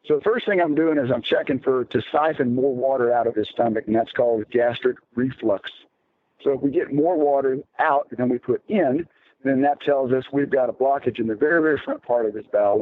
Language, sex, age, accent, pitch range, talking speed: English, male, 50-69, American, 115-155 Hz, 240 wpm